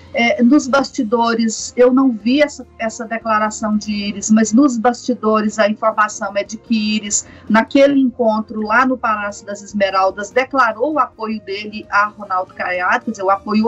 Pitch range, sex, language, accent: 215-260 Hz, female, Portuguese, Brazilian